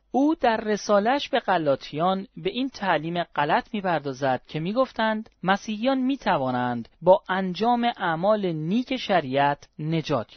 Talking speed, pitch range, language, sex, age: 115 wpm, 155-220 Hz, Persian, male, 30-49